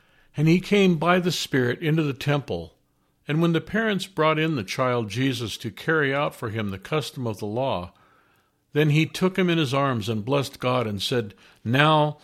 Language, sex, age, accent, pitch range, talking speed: English, male, 50-69, American, 110-145 Hz, 200 wpm